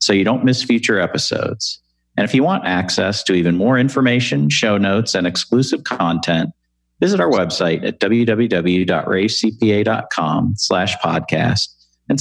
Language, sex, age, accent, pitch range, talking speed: English, male, 50-69, American, 85-120 Hz, 135 wpm